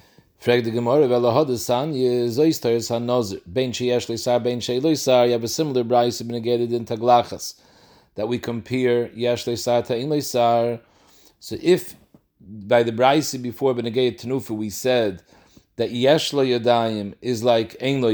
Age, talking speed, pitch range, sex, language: 40-59, 95 wpm, 115-135 Hz, male, English